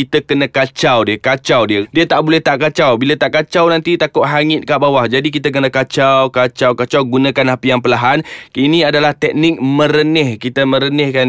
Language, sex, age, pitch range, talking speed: Malay, male, 20-39, 135-165 Hz, 185 wpm